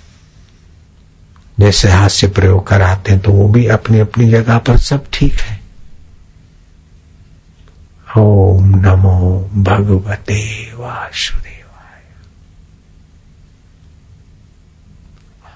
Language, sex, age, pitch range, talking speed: Hindi, male, 60-79, 85-105 Hz, 75 wpm